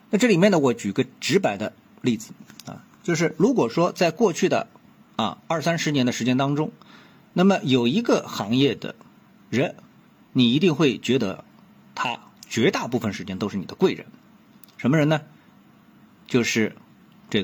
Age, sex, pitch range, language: 50-69, male, 125-210 Hz, Chinese